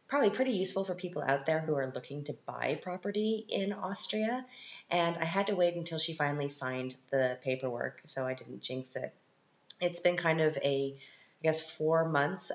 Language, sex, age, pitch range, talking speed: English, female, 30-49, 135-170 Hz, 190 wpm